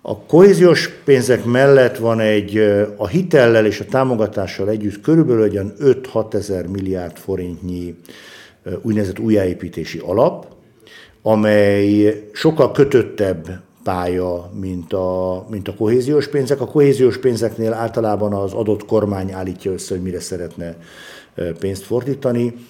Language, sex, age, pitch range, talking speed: Hungarian, male, 60-79, 90-120 Hz, 120 wpm